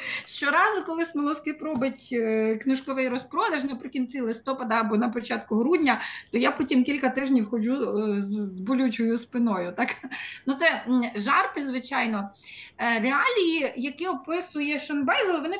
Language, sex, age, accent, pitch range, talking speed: Ukrainian, female, 30-49, native, 245-310 Hz, 120 wpm